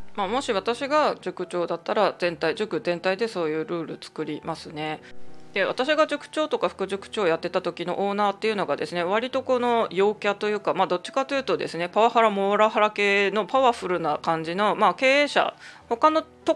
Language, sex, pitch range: Japanese, female, 175-230 Hz